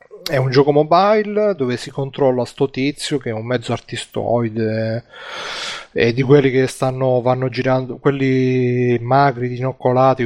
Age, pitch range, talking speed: 30-49, 120-140 Hz, 140 wpm